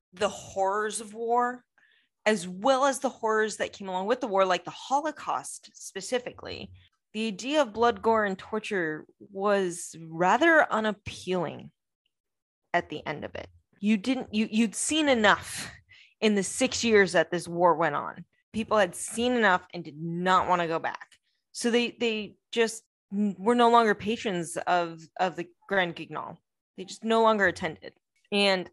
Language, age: English, 20-39